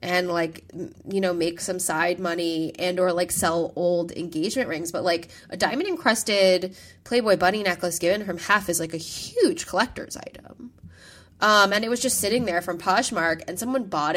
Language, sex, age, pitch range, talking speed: English, female, 10-29, 165-190 Hz, 180 wpm